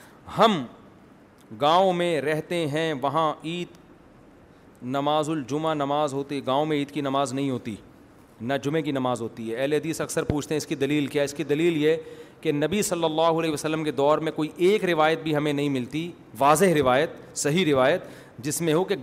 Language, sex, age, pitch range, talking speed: Urdu, male, 40-59, 145-185 Hz, 190 wpm